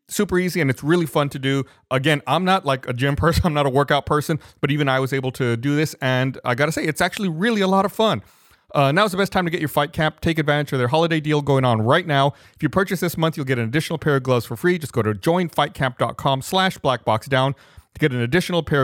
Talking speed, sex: 270 wpm, male